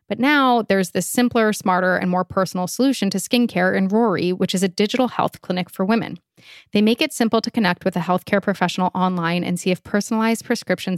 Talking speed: 210 wpm